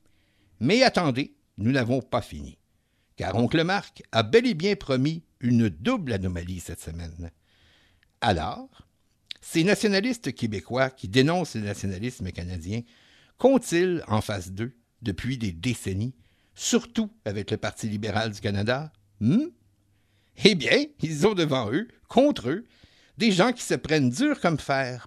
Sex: male